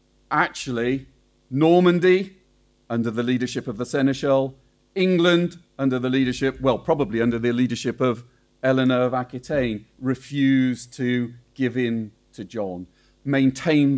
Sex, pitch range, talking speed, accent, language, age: male, 120-145 Hz, 120 wpm, British, English, 40-59